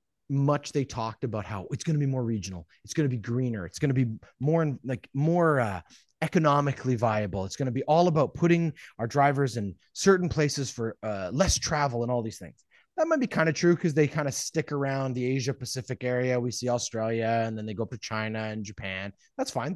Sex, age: male, 30-49